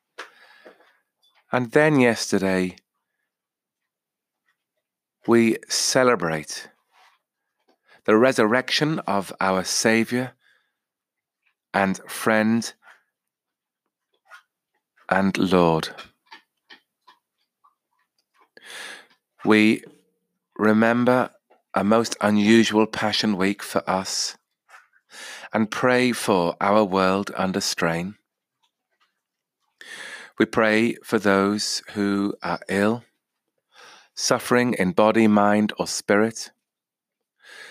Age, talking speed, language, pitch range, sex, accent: 30-49, 70 wpm, English, 100-120 Hz, male, British